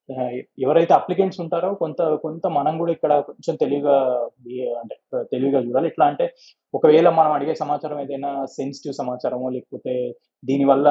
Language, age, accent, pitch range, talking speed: Telugu, 20-39, native, 130-160 Hz, 130 wpm